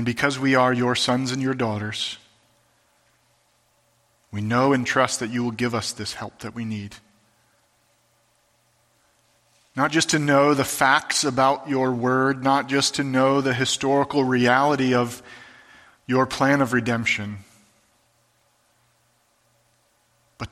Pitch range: 110-125 Hz